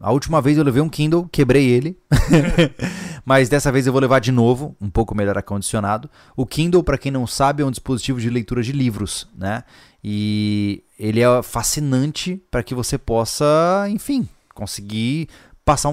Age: 20-39